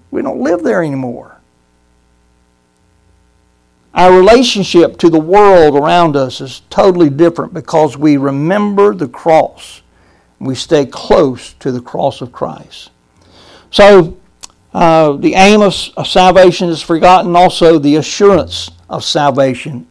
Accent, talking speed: American, 130 wpm